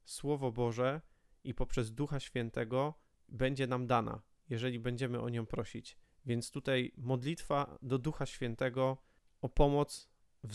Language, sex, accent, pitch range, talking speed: Polish, male, native, 115-130 Hz, 130 wpm